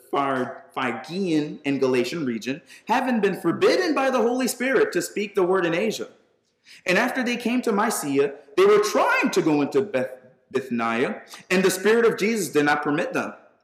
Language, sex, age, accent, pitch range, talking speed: English, male, 30-49, American, 140-225 Hz, 175 wpm